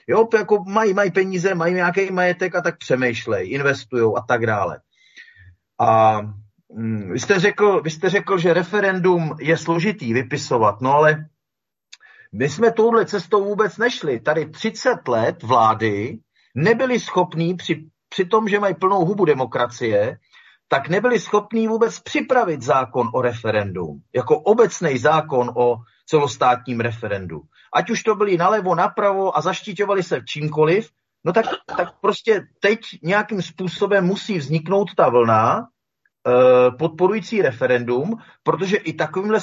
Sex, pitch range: male, 135-205 Hz